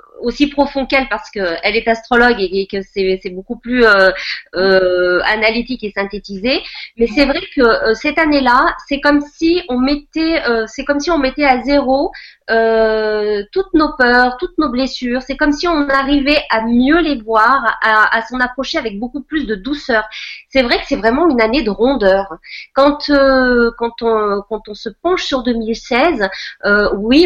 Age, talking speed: 30-49, 190 wpm